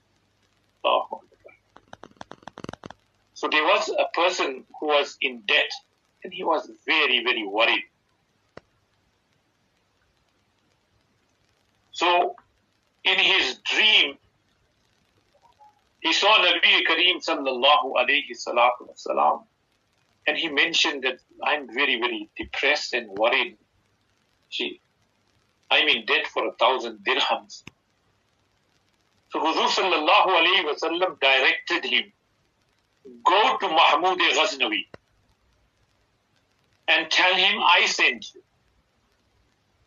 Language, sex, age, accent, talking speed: English, male, 50-69, Indian, 90 wpm